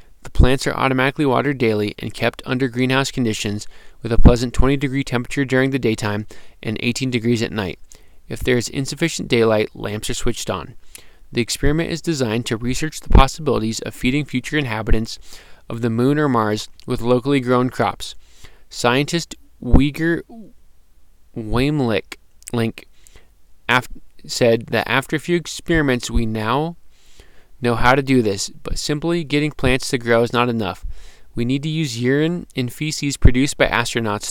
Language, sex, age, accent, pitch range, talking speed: English, male, 20-39, American, 115-140 Hz, 160 wpm